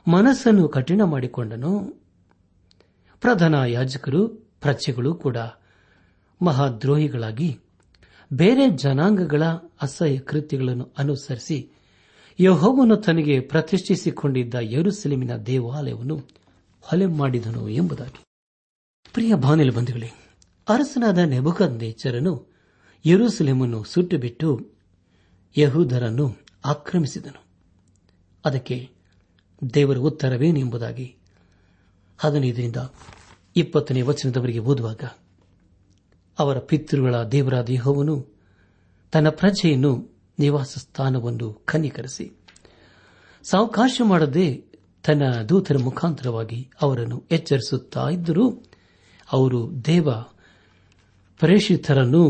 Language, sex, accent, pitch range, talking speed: Kannada, male, native, 110-160 Hz, 60 wpm